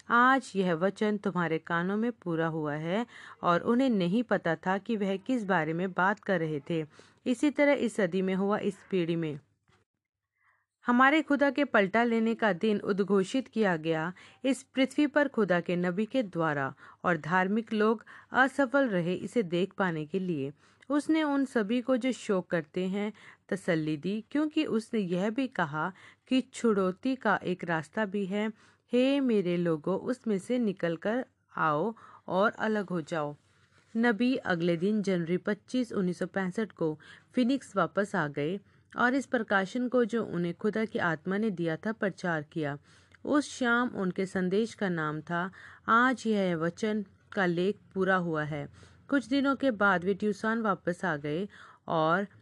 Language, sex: Hindi, female